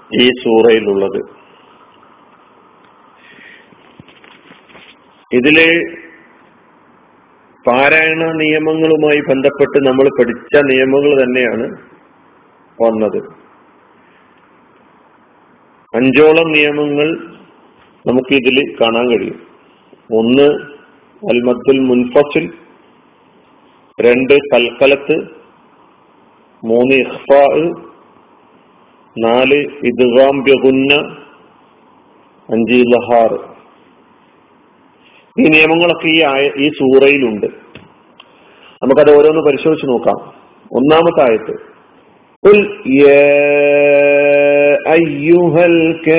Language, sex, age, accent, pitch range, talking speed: Malayalam, male, 40-59, native, 130-160 Hz, 45 wpm